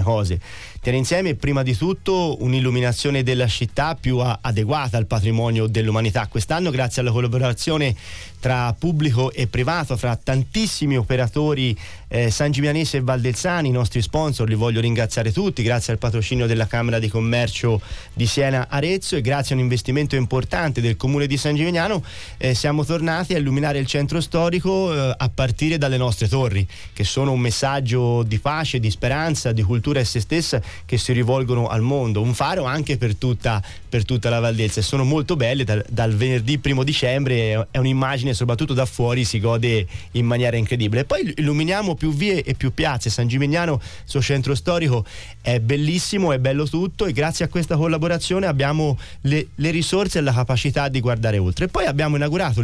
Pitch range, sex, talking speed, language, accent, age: 115-150 Hz, male, 175 wpm, Italian, native, 30-49